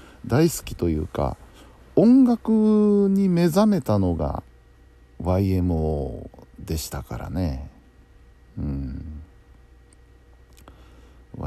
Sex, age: male, 60-79